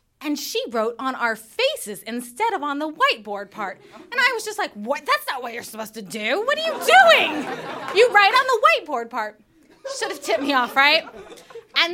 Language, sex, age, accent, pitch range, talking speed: English, female, 20-39, American, 230-365 Hz, 205 wpm